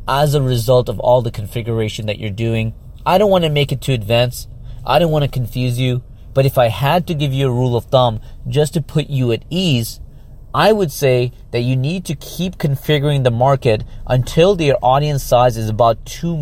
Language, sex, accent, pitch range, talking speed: English, male, American, 115-140 Hz, 215 wpm